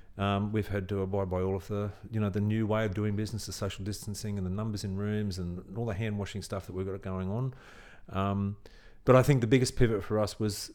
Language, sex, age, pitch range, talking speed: English, male, 40-59, 100-120 Hz, 250 wpm